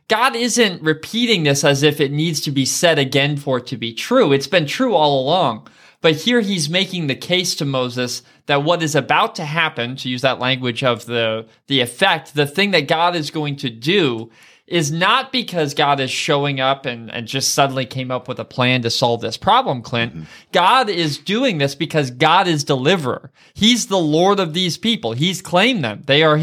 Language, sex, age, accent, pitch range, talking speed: English, male, 20-39, American, 130-175 Hz, 210 wpm